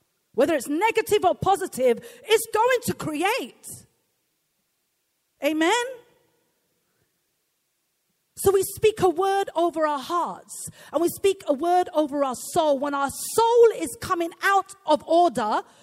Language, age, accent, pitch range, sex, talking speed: English, 40-59, British, 240-390 Hz, female, 130 wpm